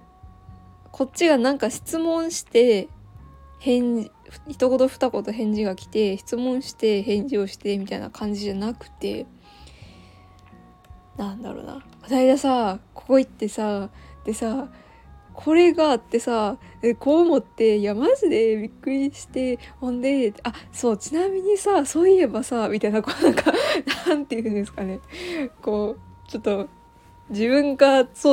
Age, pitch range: 20-39, 195-270 Hz